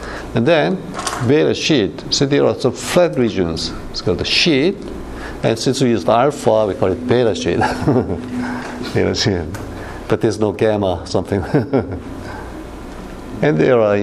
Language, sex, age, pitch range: Korean, male, 60-79, 90-125 Hz